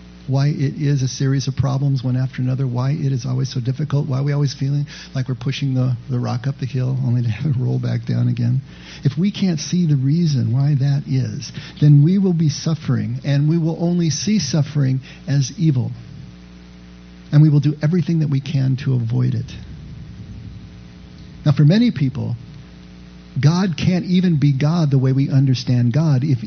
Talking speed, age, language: 195 wpm, 50-69, English